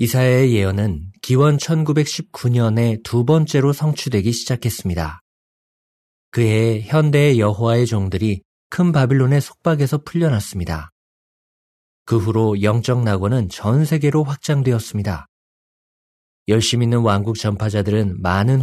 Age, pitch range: 40-59, 100-140 Hz